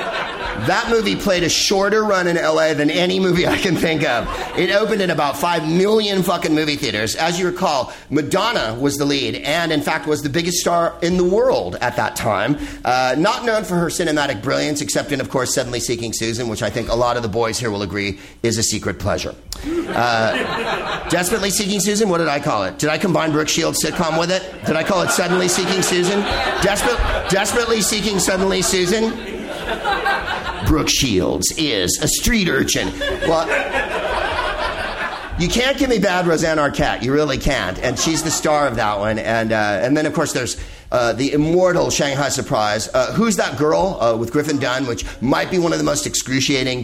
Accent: American